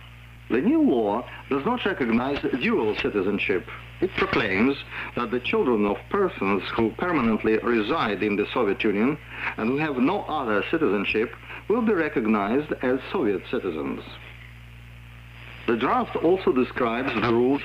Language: Italian